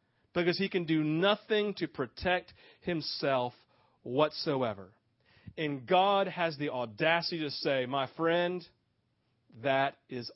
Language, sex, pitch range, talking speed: English, male, 125-185 Hz, 115 wpm